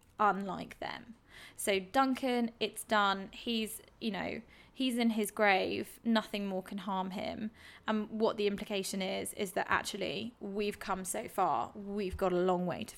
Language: English